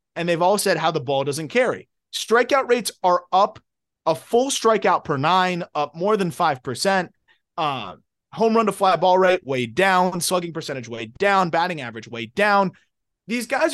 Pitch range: 170-230 Hz